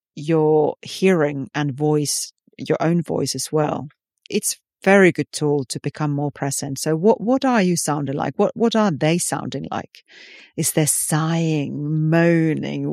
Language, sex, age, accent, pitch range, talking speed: English, female, 40-59, British, 150-195 Hz, 160 wpm